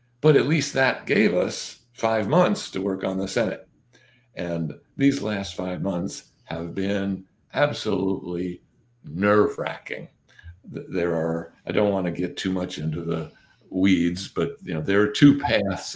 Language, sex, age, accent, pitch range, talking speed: English, male, 60-79, American, 85-115 Hz, 160 wpm